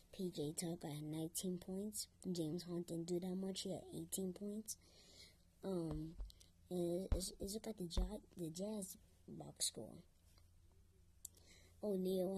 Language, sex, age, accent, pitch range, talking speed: English, male, 20-39, American, 165-200 Hz, 130 wpm